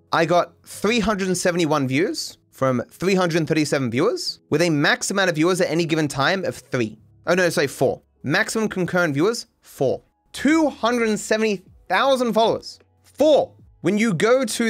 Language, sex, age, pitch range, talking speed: English, male, 30-49, 145-215 Hz, 140 wpm